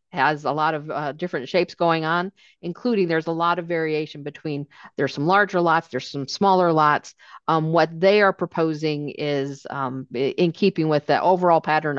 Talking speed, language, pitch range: 185 wpm, English, 145-175 Hz